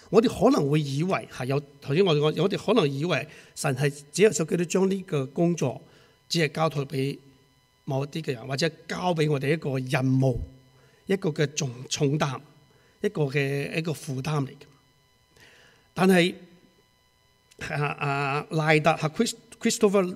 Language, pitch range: English, 135-165 Hz